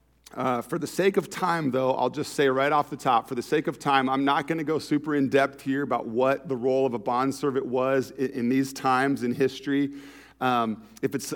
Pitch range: 125-150 Hz